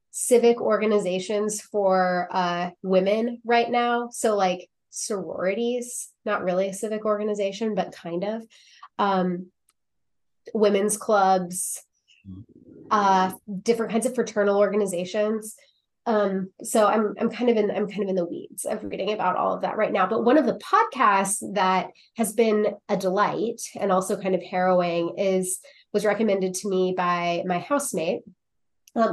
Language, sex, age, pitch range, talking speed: English, female, 20-39, 180-215 Hz, 150 wpm